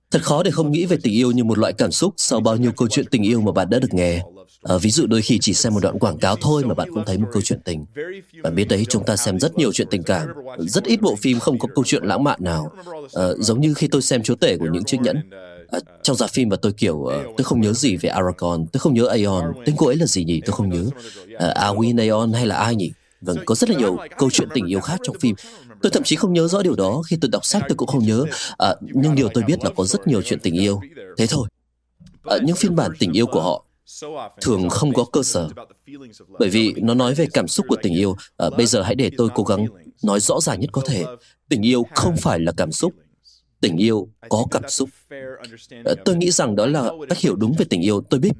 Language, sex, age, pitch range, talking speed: Vietnamese, male, 20-39, 95-135 Hz, 265 wpm